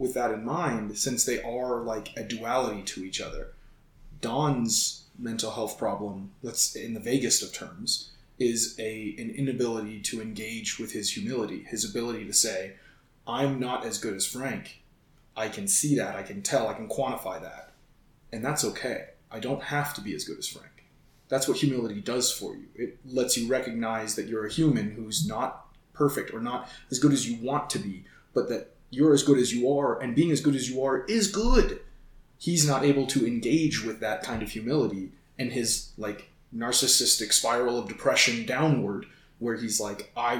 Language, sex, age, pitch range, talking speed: English, male, 20-39, 110-140 Hz, 195 wpm